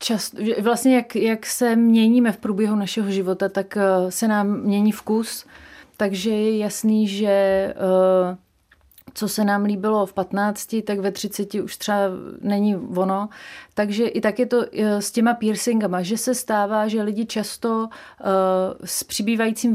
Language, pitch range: Czech, 190-215 Hz